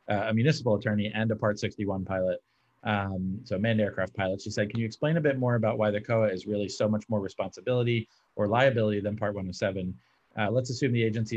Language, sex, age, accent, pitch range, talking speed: English, male, 30-49, American, 95-115 Hz, 220 wpm